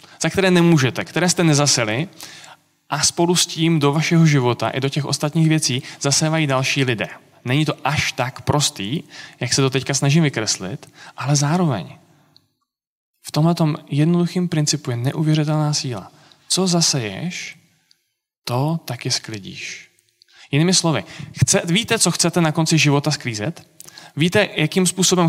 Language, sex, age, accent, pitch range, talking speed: Czech, male, 20-39, native, 135-165 Hz, 140 wpm